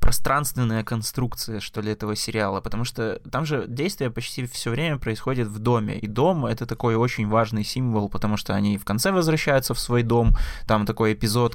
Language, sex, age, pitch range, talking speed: Russian, male, 20-39, 105-125 Hz, 185 wpm